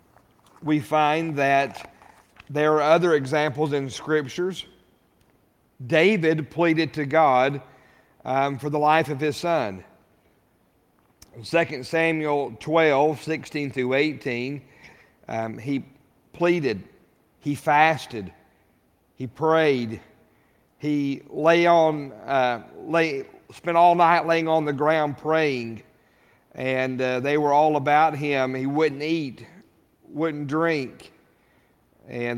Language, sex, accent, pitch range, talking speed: English, male, American, 125-155 Hz, 110 wpm